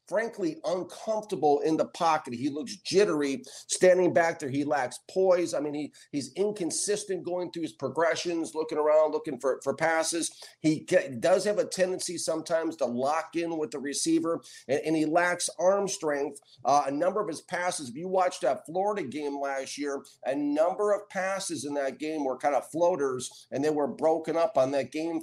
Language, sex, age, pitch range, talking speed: English, male, 50-69, 145-190 Hz, 195 wpm